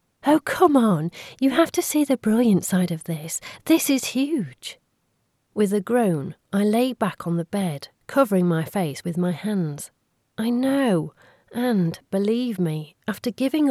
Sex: female